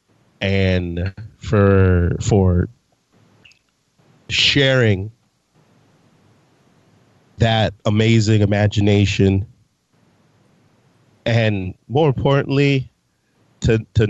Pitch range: 100-115 Hz